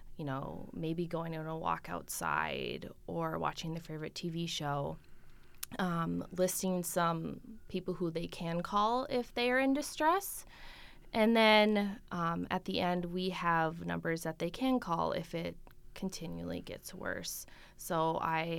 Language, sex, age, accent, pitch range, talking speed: English, female, 20-39, American, 160-190 Hz, 150 wpm